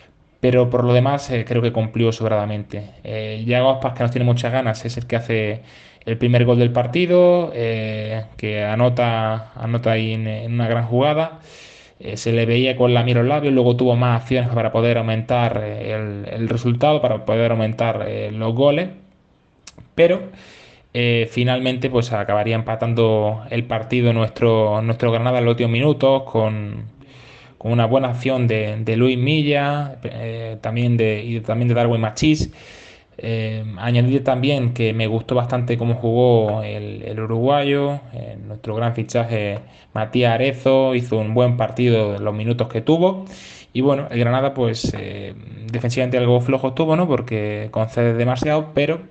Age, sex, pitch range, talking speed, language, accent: 20-39, male, 110-130 Hz, 165 wpm, Spanish, Spanish